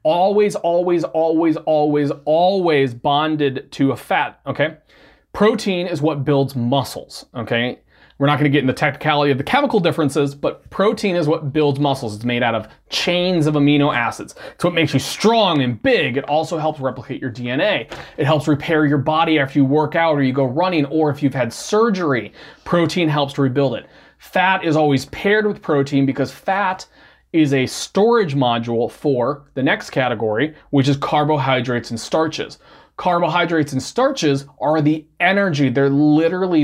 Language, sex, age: English, male, 20-39